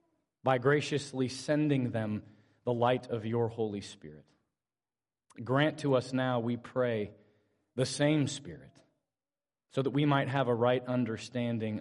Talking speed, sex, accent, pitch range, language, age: 135 wpm, male, American, 110-140 Hz, English, 30-49